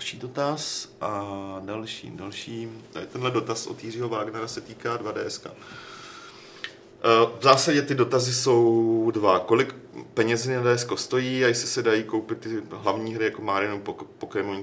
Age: 30-49